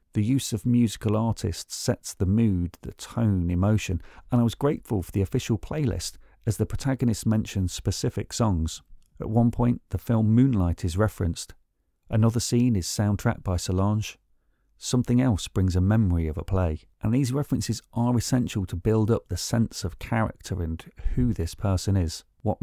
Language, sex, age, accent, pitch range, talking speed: English, male, 40-59, British, 90-120 Hz, 170 wpm